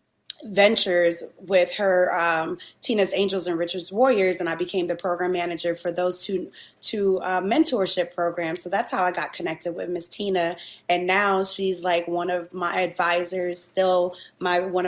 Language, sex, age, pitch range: English, female, 20-39, 175-195 Hz